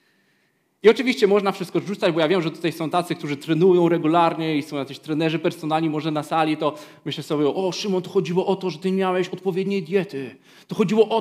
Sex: male